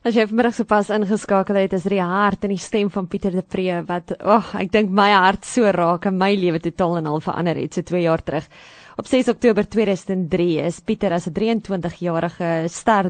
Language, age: English, 20-39